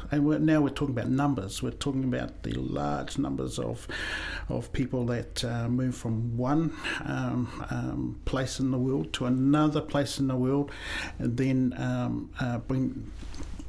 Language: English